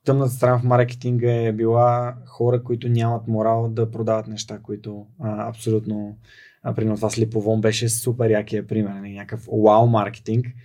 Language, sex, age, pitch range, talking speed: Bulgarian, male, 20-39, 110-125 Hz, 135 wpm